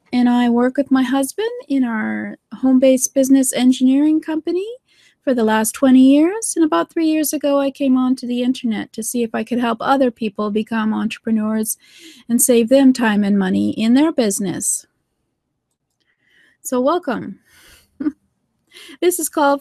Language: English